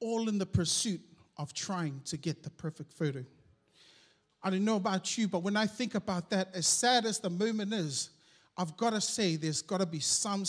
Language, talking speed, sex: English, 210 wpm, male